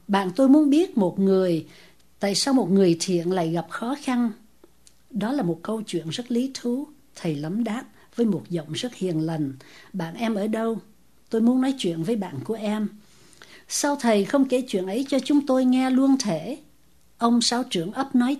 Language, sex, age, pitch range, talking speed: English, female, 60-79, 170-250 Hz, 200 wpm